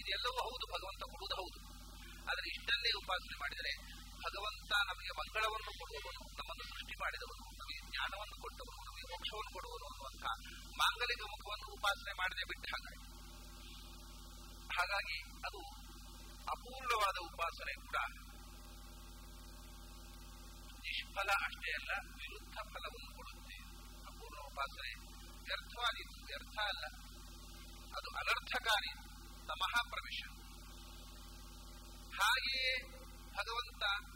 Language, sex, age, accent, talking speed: English, male, 40-59, Indian, 85 wpm